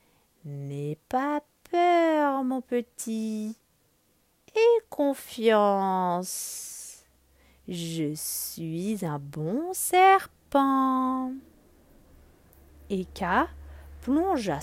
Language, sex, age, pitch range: French, female, 40-59, 175-280 Hz